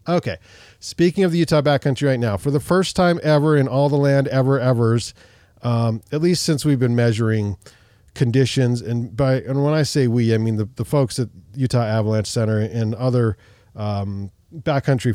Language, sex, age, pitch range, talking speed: English, male, 40-59, 105-135 Hz, 185 wpm